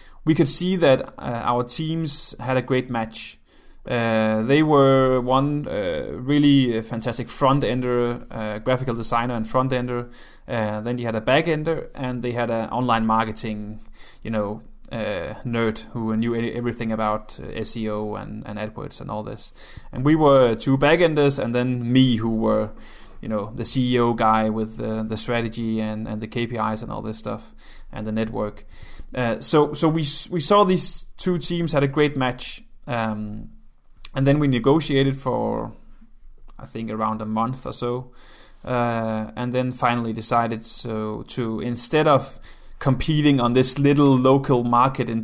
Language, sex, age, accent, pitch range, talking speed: English, male, 20-39, Danish, 110-135 Hz, 170 wpm